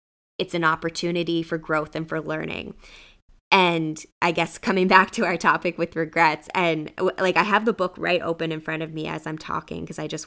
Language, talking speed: English, 210 wpm